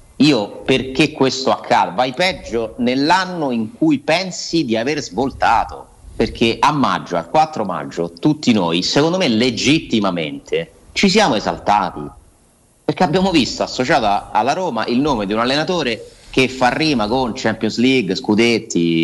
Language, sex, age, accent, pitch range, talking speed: Italian, male, 30-49, native, 95-140 Hz, 140 wpm